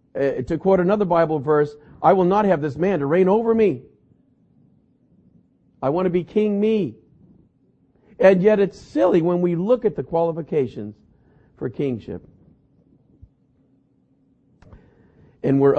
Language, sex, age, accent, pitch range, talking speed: English, male, 50-69, American, 135-185 Hz, 135 wpm